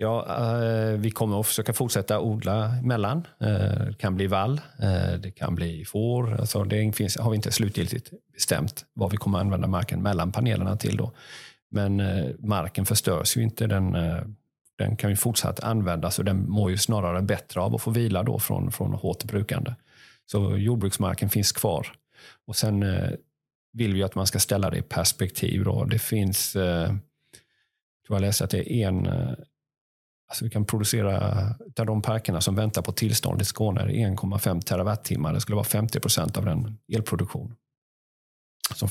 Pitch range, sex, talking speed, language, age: 100-115 Hz, male, 165 wpm, Swedish, 40-59